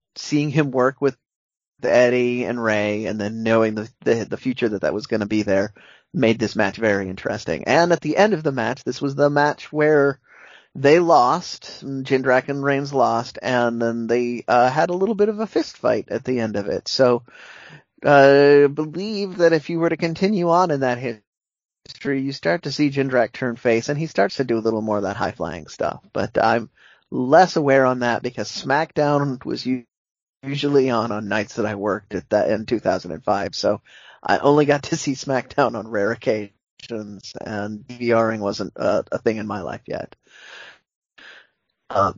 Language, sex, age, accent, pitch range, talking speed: English, male, 30-49, American, 110-145 Hz, 195 wpm